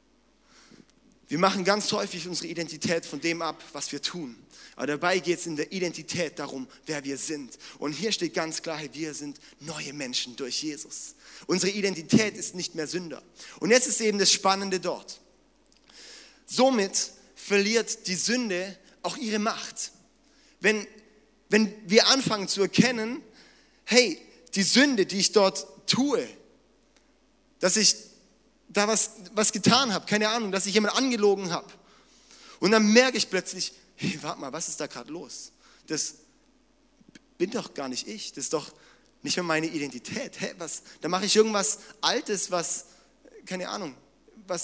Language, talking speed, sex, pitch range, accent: German, 160 wpm, male, 170-220 Hz, German